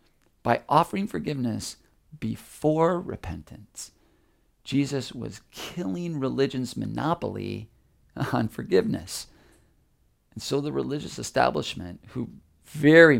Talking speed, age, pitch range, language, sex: 85 wpm, 40-59, 95-140 Hz, English, male